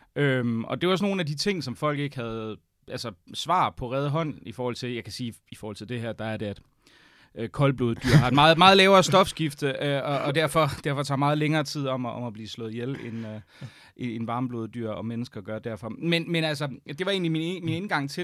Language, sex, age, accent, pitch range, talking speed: Danish, male, 30-49, native, 115-145 Hz, 250 wpm